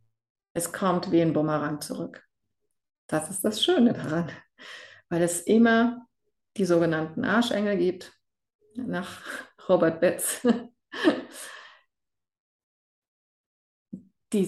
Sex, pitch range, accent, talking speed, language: female, 165-205 Hz, German, 90 wpm, German